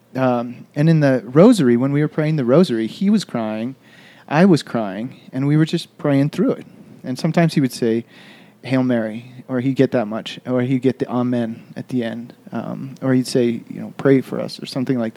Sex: male